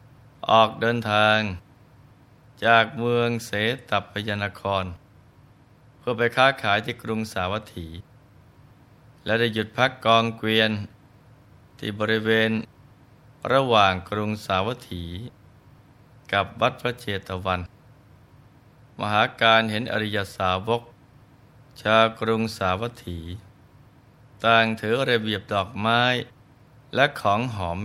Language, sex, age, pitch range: Thai, male, 20-39, 105-125 Hz